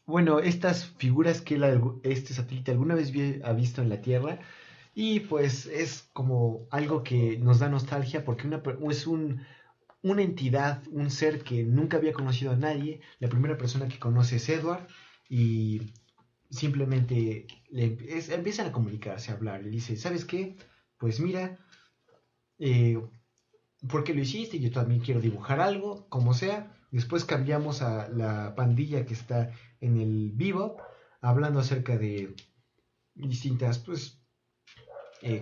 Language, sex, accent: Spanish, male, Mexican